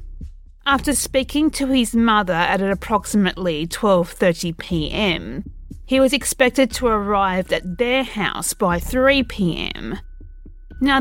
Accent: Australian